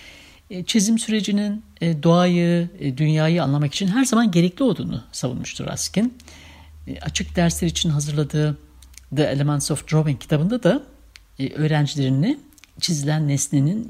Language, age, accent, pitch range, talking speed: Turkish, 60-79, native, 140-200 Hz, 110 wpm